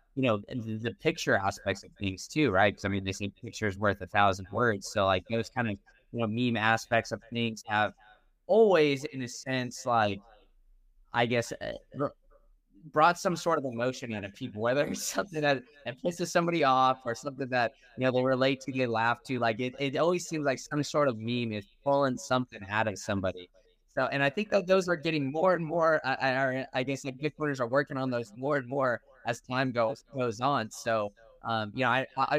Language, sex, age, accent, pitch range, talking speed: English, male, 20-39, American, 110-145 Hz, 215 wpm